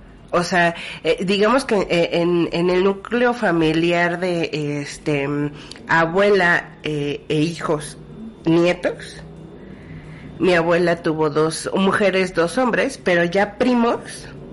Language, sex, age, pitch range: Spanish, female, 40-59, 165-210 Hz